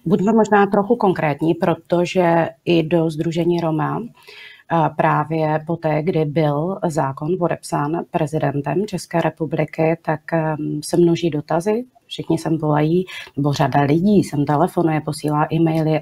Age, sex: 30-49, female